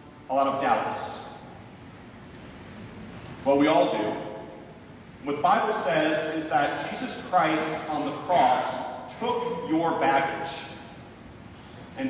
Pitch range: 150-220 Hz